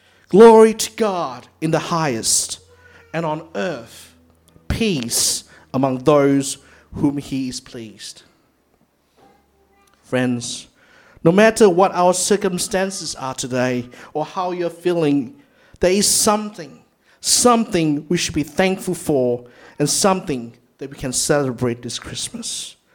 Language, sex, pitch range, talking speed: English, male, 135-195 Hz, 120 wpm